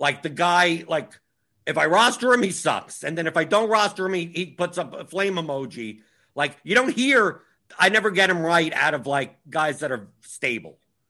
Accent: American